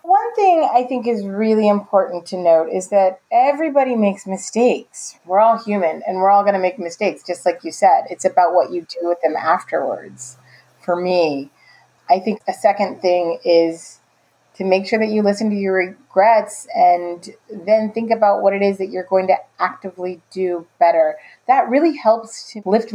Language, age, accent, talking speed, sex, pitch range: English, 30-49, American, 190 wpm, female, 180-225 Hz